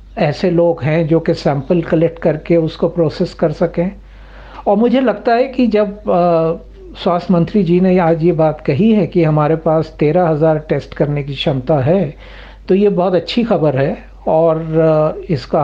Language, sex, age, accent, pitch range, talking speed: Hindi, male, 60-79, native, 155-195 Hz, 170 wpm